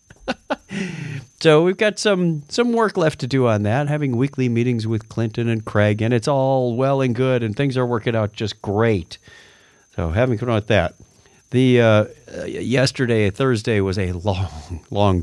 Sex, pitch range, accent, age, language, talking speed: male, 100-130 Hz, American, 50-69, English, 175 wpm